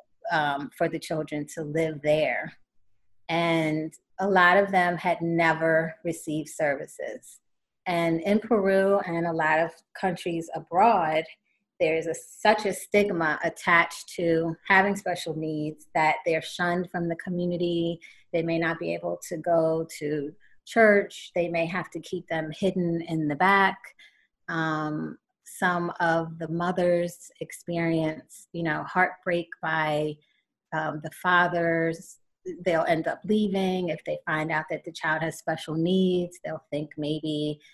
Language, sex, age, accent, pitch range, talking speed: English, female, 30-49, American, 160-180 Hz, 140 wpm